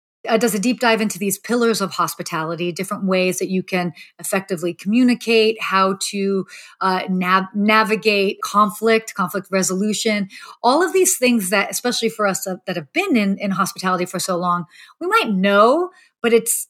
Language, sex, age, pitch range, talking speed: English, female, 30-49, 195-235 Hz, 170 wpm